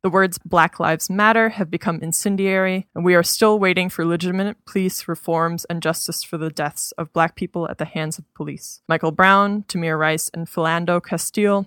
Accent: American